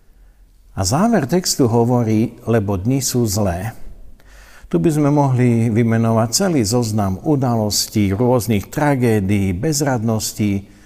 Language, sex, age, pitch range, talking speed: Slovak, male, 60-79, 100-125 Hz, 105 wpm